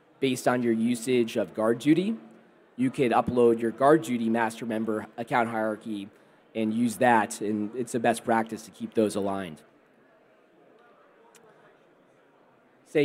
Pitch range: 115-135 Hz